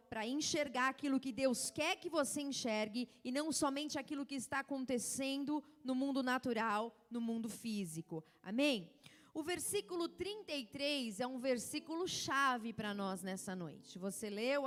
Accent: Brazilian